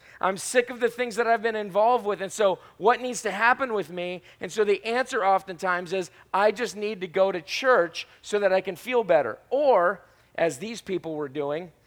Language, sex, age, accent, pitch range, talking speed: English, male, 40-59, American, 160-235 Hz, 215 wpm